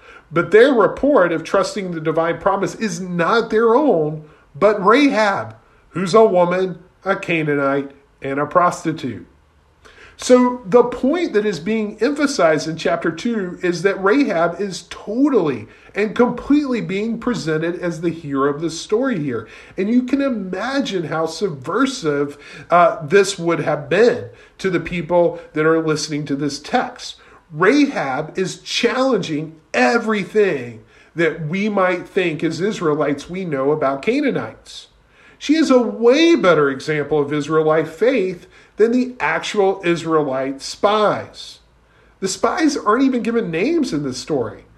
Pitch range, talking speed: 155-235 Hz, 140 wpm